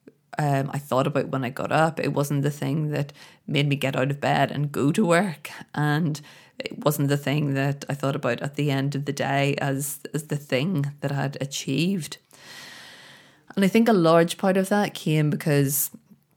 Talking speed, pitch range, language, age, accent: 205 wpm, 140-170 Hz, English, 20-39, Irish